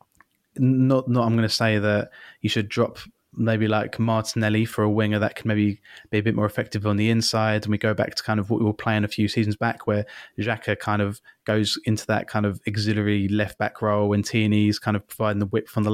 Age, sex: 20-39, male